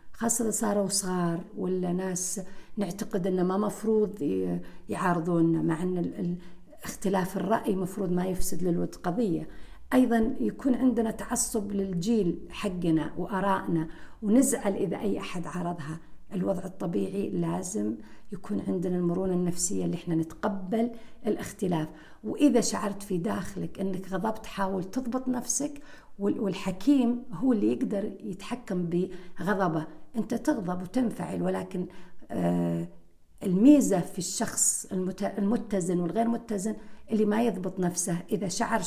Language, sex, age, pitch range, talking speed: Arabic, female, 50-69, 175-220 Hz, 110 wpm